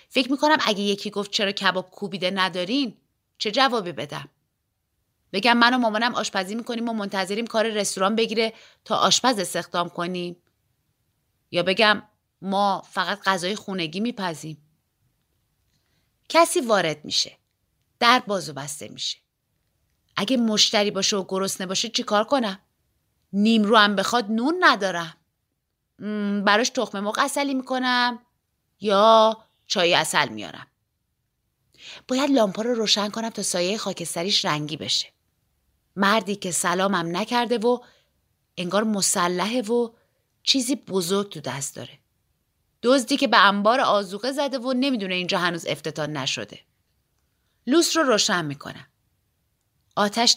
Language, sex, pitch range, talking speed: Persian, female, 175-230 Hz, 125 wpm